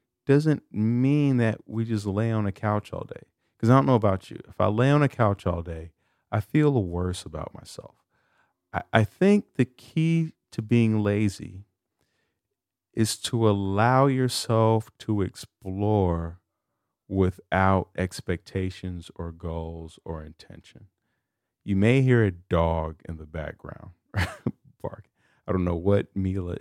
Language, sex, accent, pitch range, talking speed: English, male, American, 85-115 Hz, 145 wpm